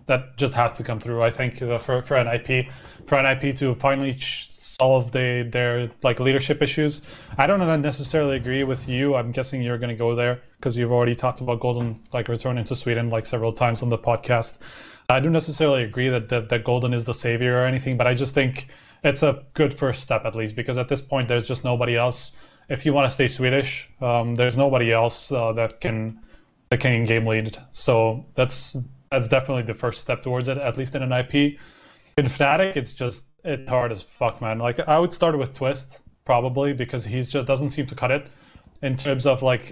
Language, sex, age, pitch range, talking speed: English, male, 20-39, 120-135 Hz, 215 wpm